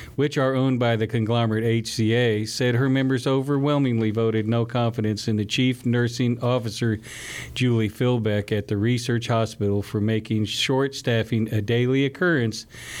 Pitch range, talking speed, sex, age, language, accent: 115-130 Hz, 150 wpm, male, 50-69, English, American